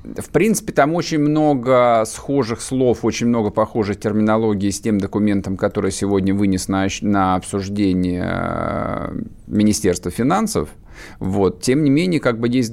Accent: native